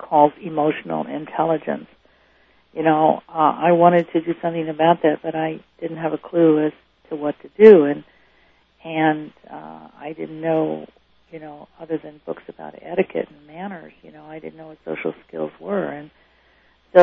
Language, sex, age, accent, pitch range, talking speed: English, female, 50-69, American, 145-165 Hz, 175 wpm